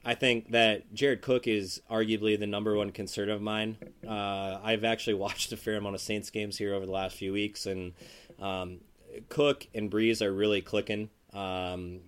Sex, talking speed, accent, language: male, 190 wpm, American, English